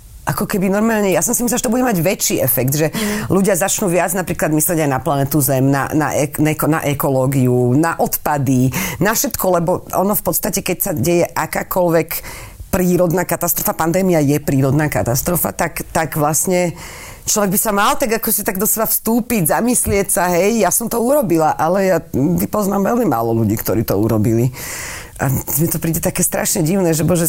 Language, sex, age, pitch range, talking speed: Slovak, female, 40-59, 140-195 Hz, 185 wpm